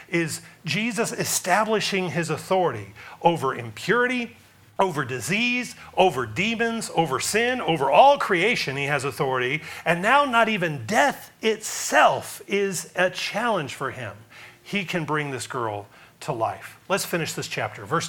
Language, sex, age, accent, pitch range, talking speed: English, male, 40-59, American, 140-205 Hz, 140 wpm